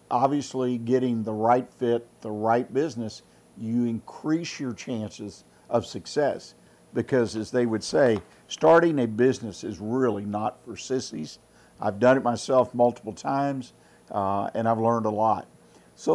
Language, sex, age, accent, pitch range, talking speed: English, male, 50-69, American, 110-130 Hz, 150 wpm